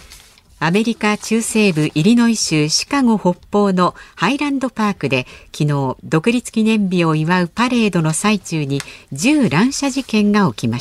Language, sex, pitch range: Japanese, female, 150-225 Hz